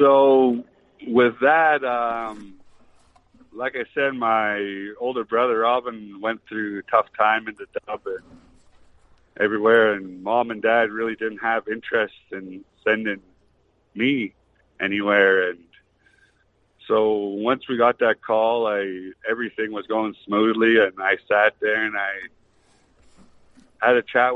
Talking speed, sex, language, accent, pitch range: 135 wpm, male, English, American, 100-115 Hz